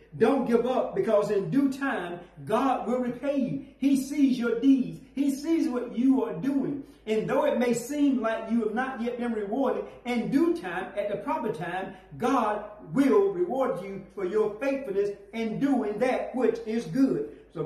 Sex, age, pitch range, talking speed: male, 40-59, 170-245 Hz, 185 wpm